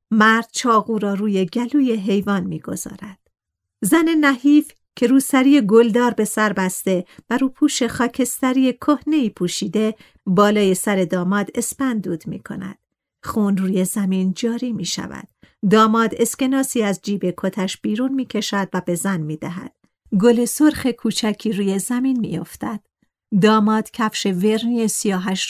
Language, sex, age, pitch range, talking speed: Persian, female, 50-69, 195-250 Hz, 130 wpm